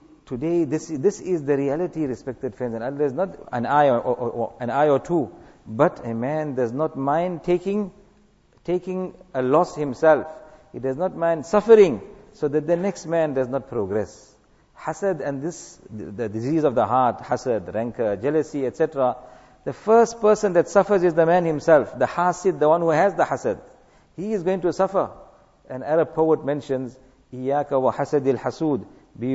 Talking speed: 180 wpm